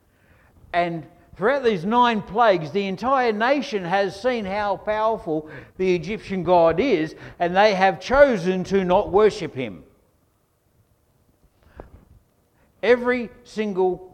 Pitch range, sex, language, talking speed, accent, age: 115-185 Hz, male, English, 110 wpm, Australian, 60-79